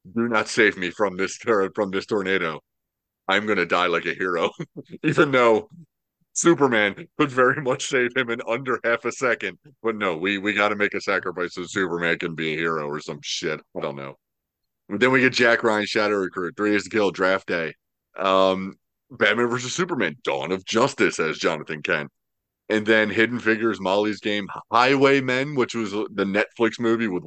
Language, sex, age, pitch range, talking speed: English, male, 30-49, 90-125 Hz, 190 wpm